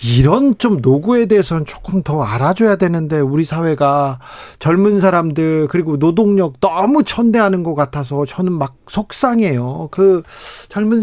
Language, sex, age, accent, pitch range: Korean, male, 40-59, native, 150-205 Hz